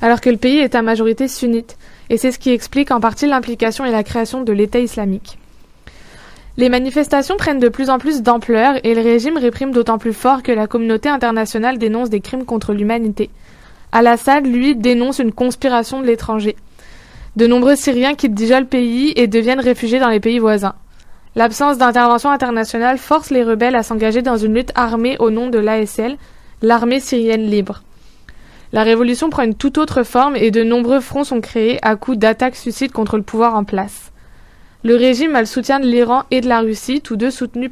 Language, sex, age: French, female, 20-39